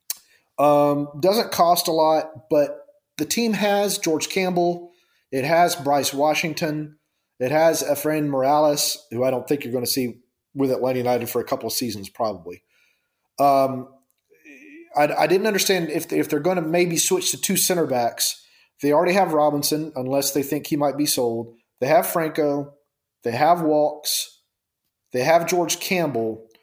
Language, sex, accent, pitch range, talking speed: English, male, American, 135-155 Hz, 170 wpm